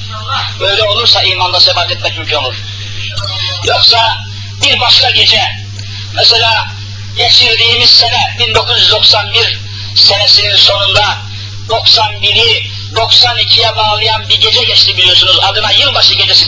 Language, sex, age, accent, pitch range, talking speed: Turkish, male, 50-69, native, 100-105 Hz, 100 wpm